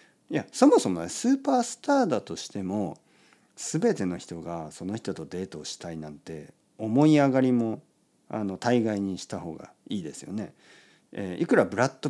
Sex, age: male, 50-69